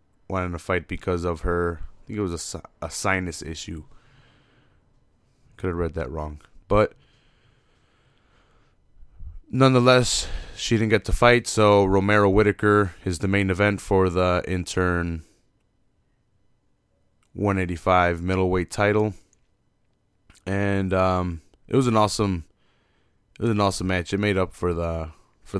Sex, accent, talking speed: male, American, 135 wpm